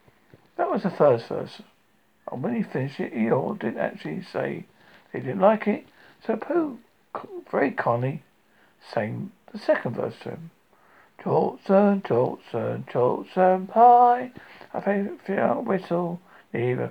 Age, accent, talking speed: 60-79, British, 130 wpm